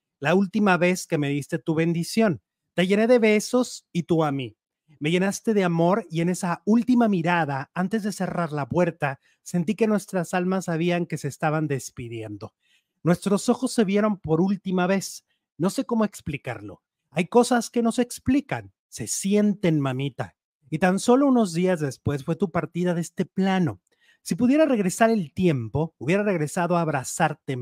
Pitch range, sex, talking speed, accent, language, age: 150-205 Hz, male, 175 wpm, Mexican, Spanish, 40-59